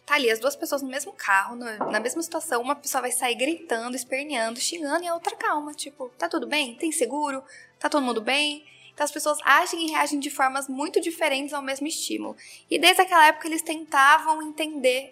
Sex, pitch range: female, 260-315 Hz